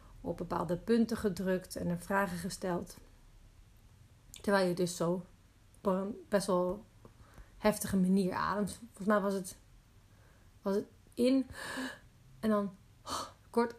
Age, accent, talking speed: 40-59, Dutch, 125 wpm